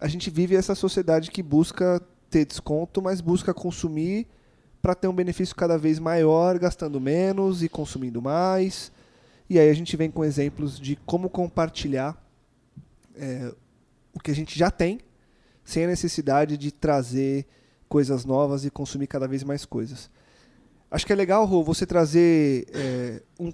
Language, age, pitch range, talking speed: Portuguese, 20-39, 145-190 Hz, 155 wpm